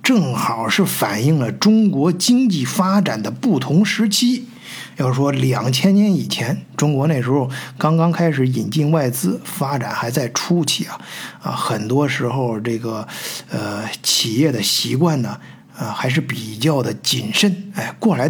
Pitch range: 130-205 Hz